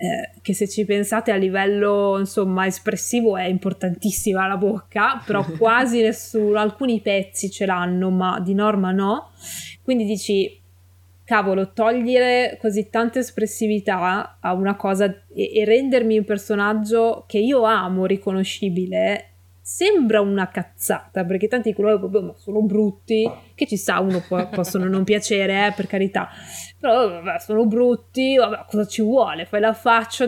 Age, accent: 20-39, native